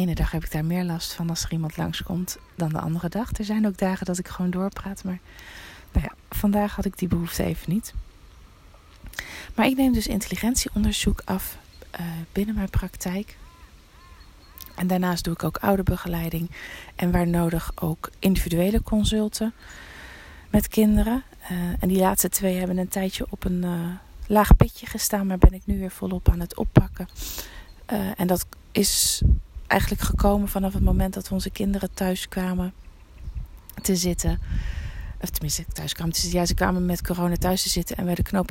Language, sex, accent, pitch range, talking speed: Dutch, female, Dutch, 170-200 Hz, 175 wpm